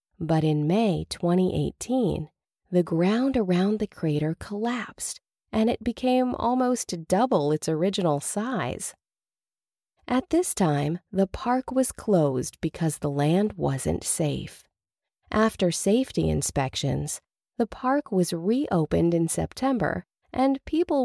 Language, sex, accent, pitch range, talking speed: English, female, American, 170-250 Hz, 115 wpm